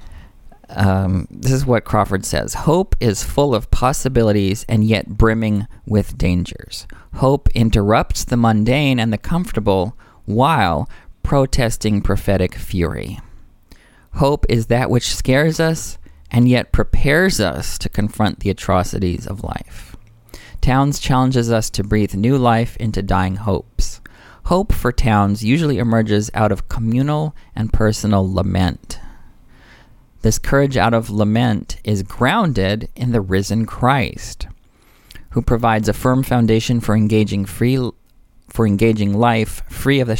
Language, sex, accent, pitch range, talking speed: English, male, American, 95-120 Hz, 135 wpm